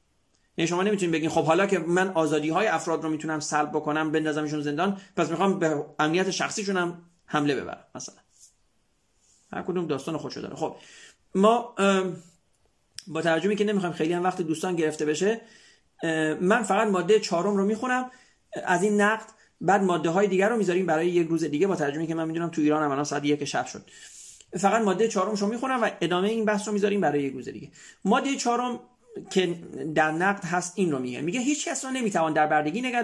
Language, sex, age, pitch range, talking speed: Persian, male, 40-59, 160-215 Hz, 190 wpm